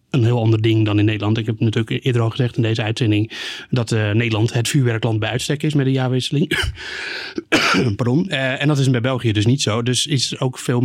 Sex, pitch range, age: male, 110-125 Hz, 30-49